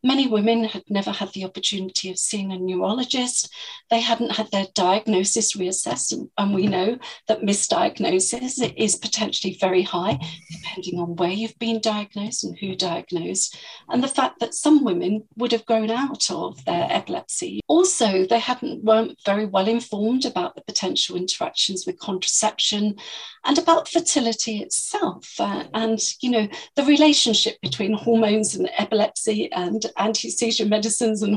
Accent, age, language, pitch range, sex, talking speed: British, 40-59, English, 190-240 Hz, female, 150 wpm